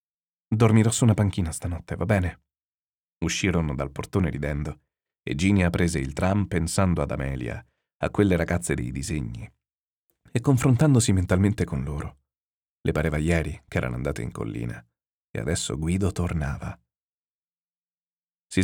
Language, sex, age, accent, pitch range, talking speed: Italian, male, 40-59, native, 75-105 Hz, 135 wpm